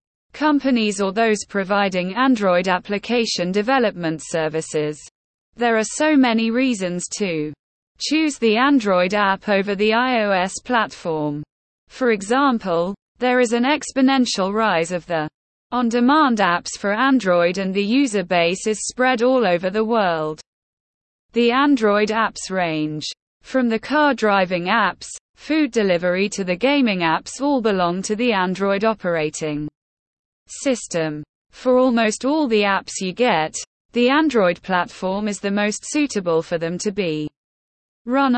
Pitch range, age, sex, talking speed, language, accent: 180-245 Hz, 20-39, female, 135 wpm, English, British